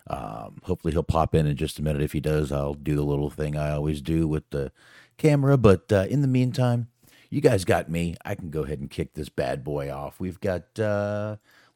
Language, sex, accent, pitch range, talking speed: English, male, American, 75-105 Hz, 230 wpm